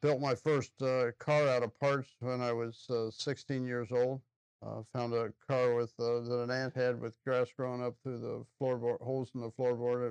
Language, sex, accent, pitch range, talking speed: English, male, American, 120-135 Hz, 225 wpm